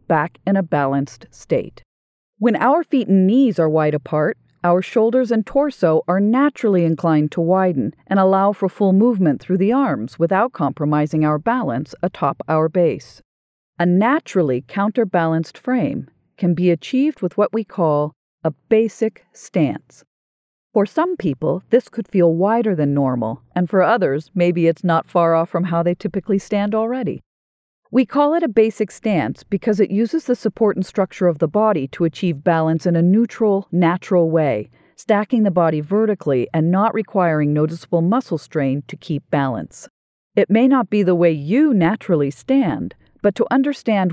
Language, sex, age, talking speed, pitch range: English, female, 40-59, 165 wpm, 160-220 Hz